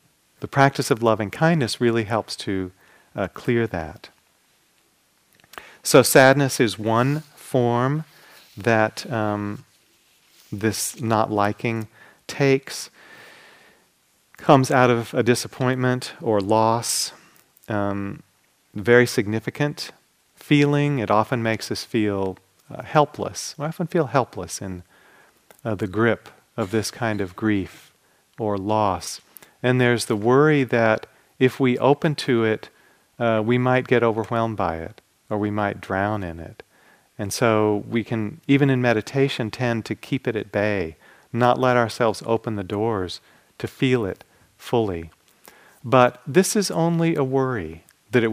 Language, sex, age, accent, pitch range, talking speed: English, male, 40-59, American, 105-130 Hz, 135 wpm